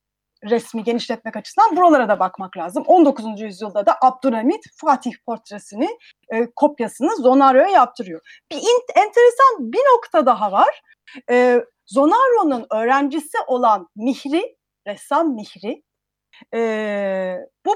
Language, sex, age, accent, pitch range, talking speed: Turkish, female, 40-59, native, 215-310 Hz, 110 wpm